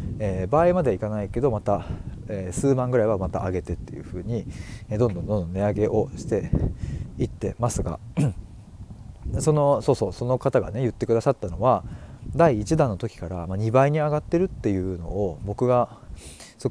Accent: native